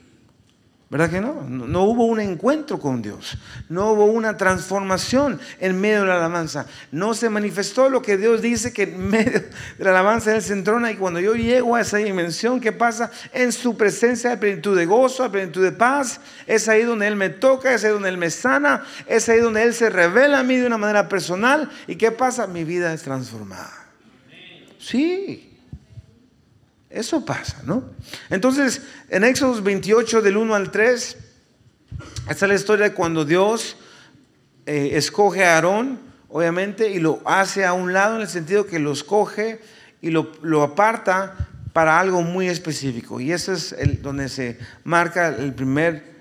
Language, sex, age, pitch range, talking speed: Spanish, male, 40-59, 155-220 Hz, 180 wpm